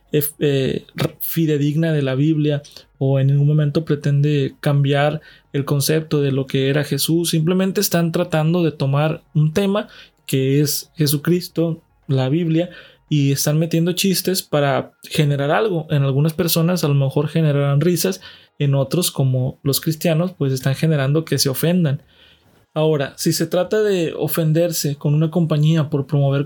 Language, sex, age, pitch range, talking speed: Spanish, male, 20-39, 140-165 Hz, 150 wpm